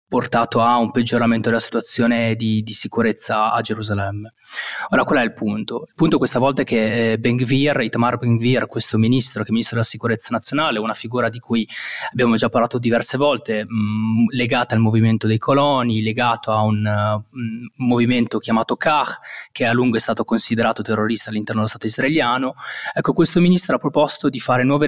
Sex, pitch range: male, 110-125 Hz